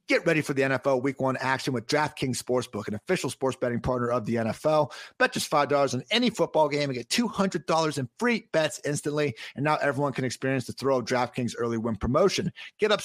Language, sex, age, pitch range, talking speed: English, male, 40-59, 125-160 Hz, 215 wpm